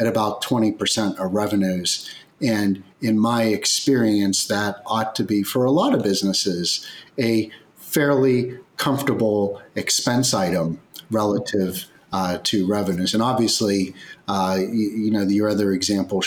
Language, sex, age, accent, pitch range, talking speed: English, male, 40-59, American, 100-140 Hz, 135 wpm